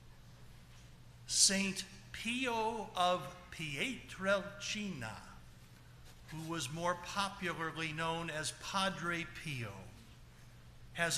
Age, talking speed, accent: 60-79, 70 wpm, American